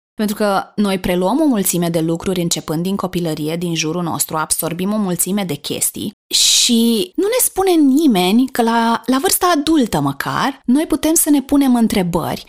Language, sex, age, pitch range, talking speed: Romanian, female, 20-39, 165-235 Hz, 175 wpm